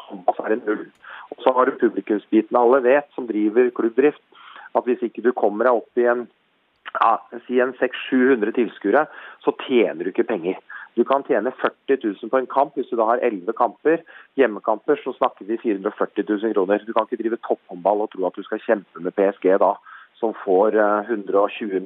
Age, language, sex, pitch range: 30-49, English, male, 110-140 Hz